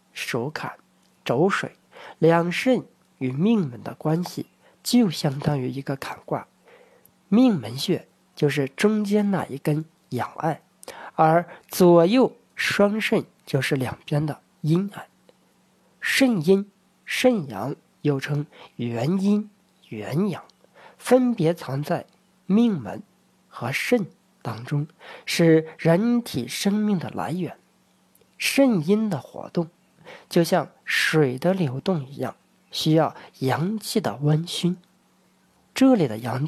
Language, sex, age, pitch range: Chinese, male, 50-69, 145-205 Hz